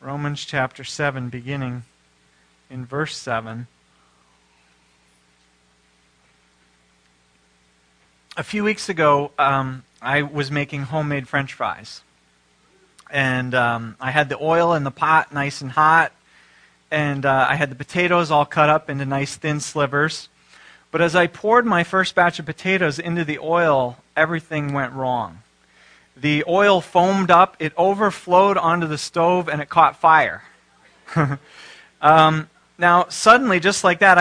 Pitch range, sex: 130-180 Hz, male